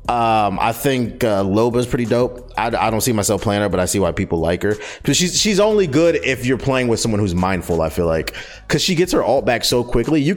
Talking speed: 260 wpm